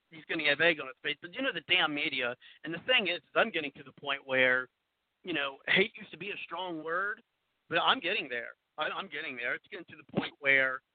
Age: 50-69